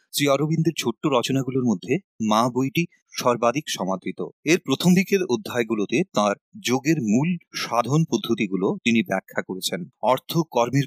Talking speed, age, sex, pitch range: 125 wpm, 30-49, male, 115-145 Hz